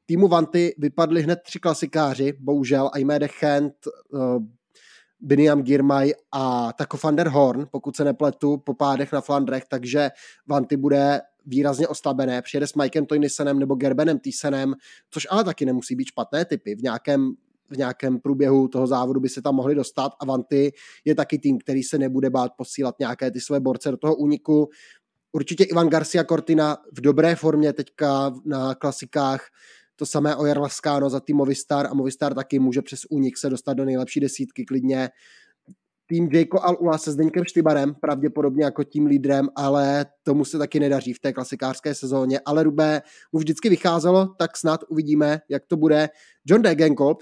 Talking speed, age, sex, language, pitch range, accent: 170 wpm, 20-39, male, Czech, 140-155 Hz, native